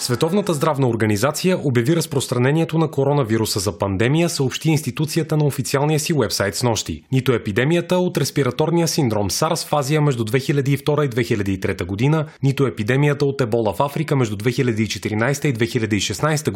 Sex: male